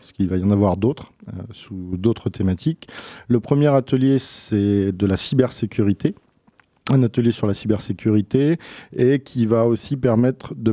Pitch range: 100-120 Hz